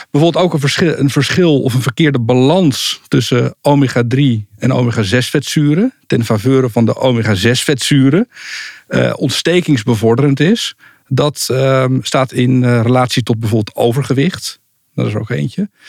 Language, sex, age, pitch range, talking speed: Dutch, male, 50-69, 120-145 Hz, 135 wpm